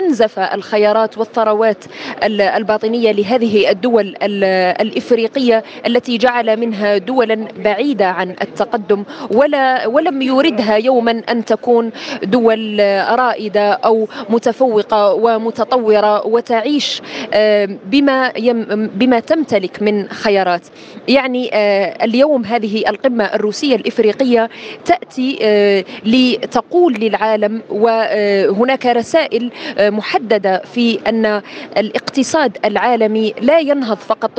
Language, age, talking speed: Arabic, 20-39, 85 wpm